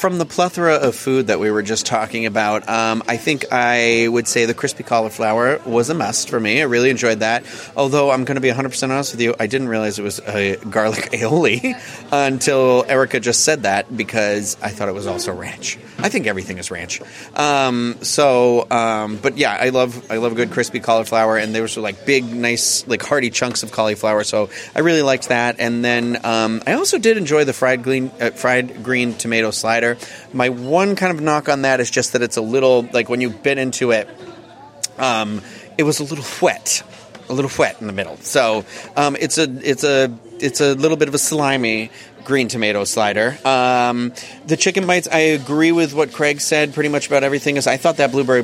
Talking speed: 215 wpm